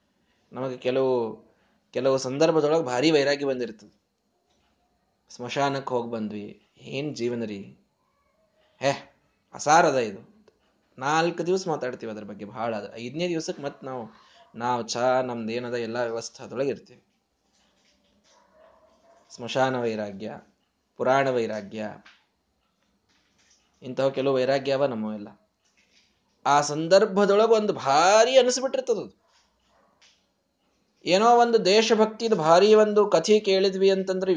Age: 20-39